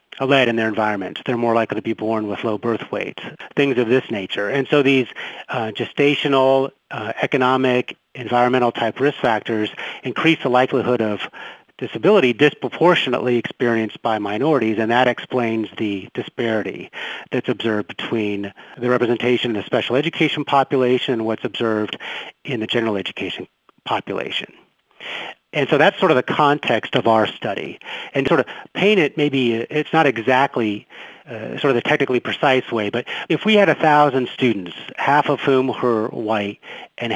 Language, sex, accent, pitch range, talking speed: English, male, American, 110-140 Hz, 160 wpm